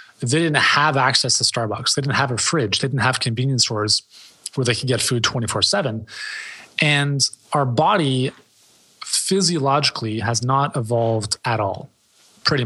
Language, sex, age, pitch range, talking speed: English, male, 20-39, 125-155 Hz, 150 wpm